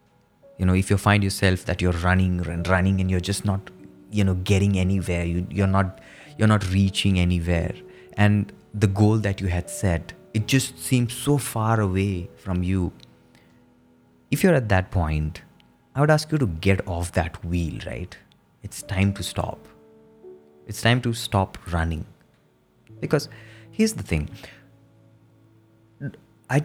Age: 20-39